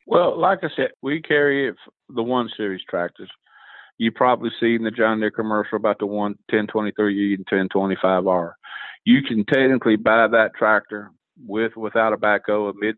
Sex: male